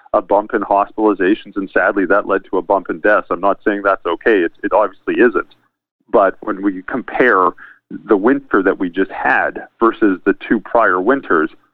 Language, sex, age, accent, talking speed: English, male, 40-59, American, 190 wpm